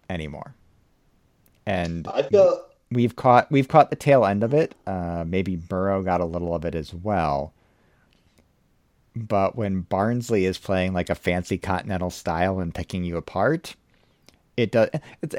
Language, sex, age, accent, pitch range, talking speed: English, male, 40-59, American, 85-110 Hz, 150 wpm